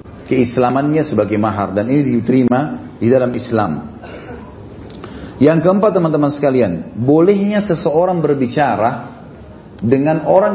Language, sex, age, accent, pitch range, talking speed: Indonesian, male, 40-59, native, 125-170 Hz, 100 wpm